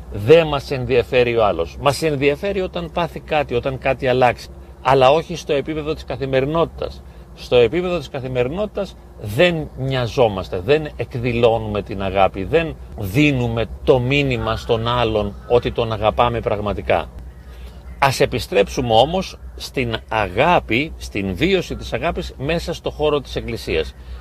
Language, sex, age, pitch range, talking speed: Greek, male, 40-59, 105-160 Hz, 130 wpm